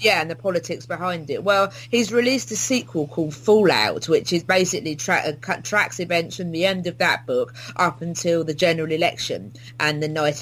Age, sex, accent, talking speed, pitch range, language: 30-49, female, British, 190 wpm, 155-195 Hz, English